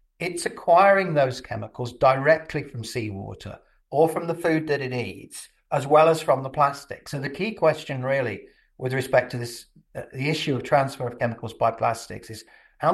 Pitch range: 120-145 Hz